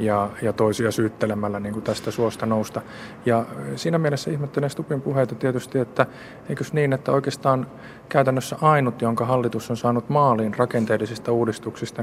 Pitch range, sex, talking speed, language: 110-130 Hz, male, 135 wpm, Finnish